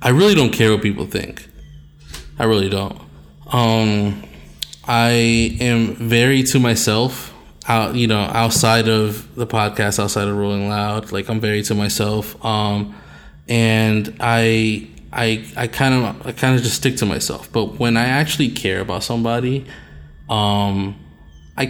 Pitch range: 105-120 Hz